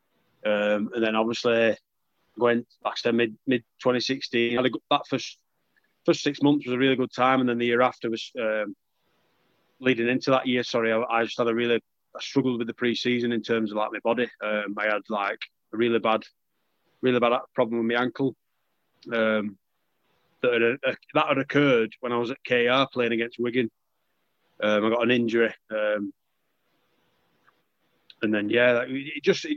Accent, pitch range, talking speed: British, 115-130 Hz, 195 wpm